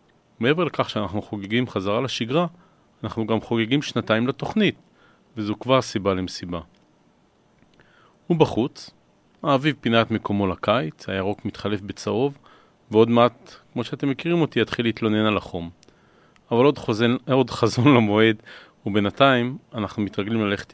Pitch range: 105-125 Hz